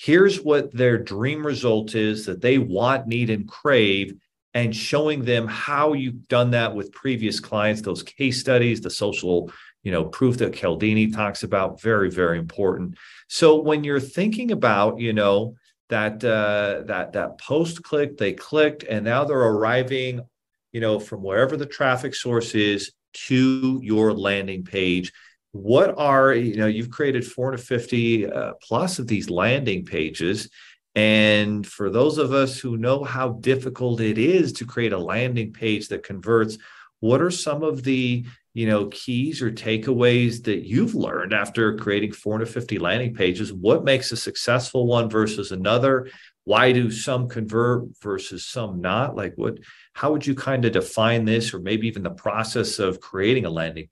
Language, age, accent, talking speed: English, 40-59, American, 165 wpm